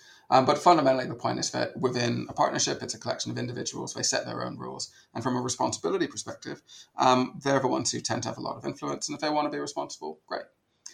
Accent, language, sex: British, English, male